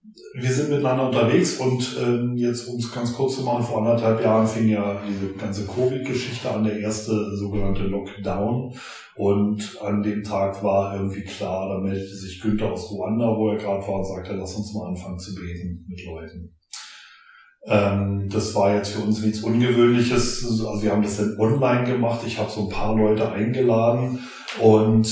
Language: German